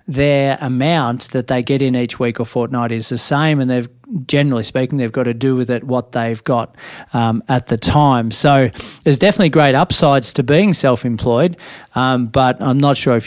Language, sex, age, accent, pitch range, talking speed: English, male, 40-59, Australian, 120-145 Hz, 195 wpm